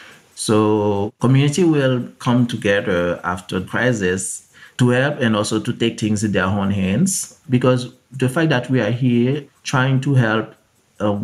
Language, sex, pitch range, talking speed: English, male, 105-130 Hz, 155 wpm